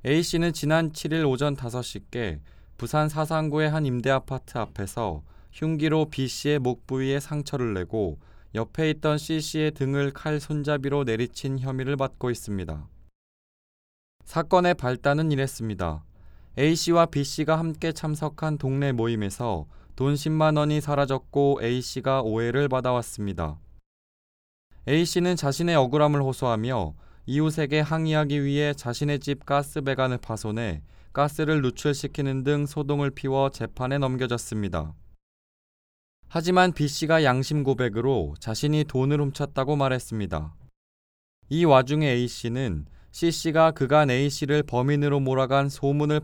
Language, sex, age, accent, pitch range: Korean, male, 20-39, native, 110-150 Hz